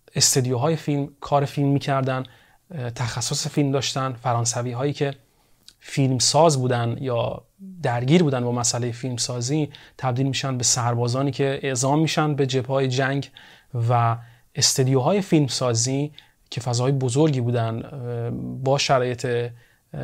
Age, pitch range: 30-49, 120-145 Hz